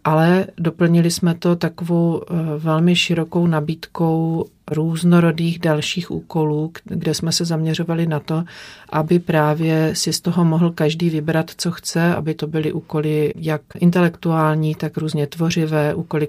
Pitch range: 155-170 Hz